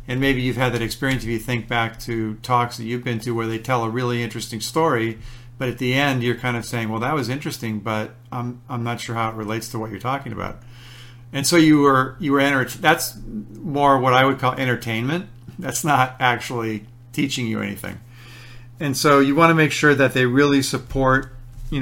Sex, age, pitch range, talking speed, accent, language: male, 50-69, 120-135 Hz, 215 wpm, American, English